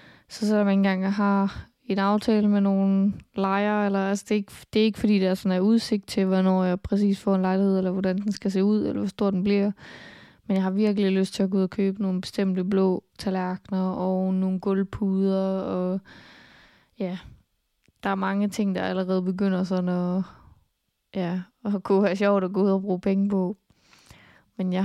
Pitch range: 185-205 Hz